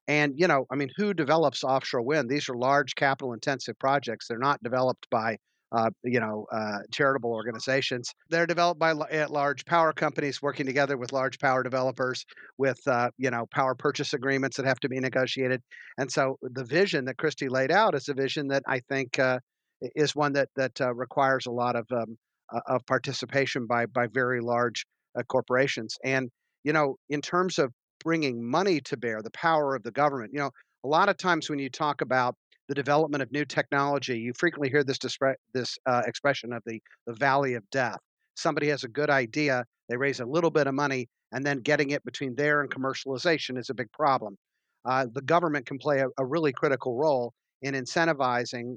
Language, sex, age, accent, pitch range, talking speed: English, male, 50-69, American, 125-145 Hz, 205 wpm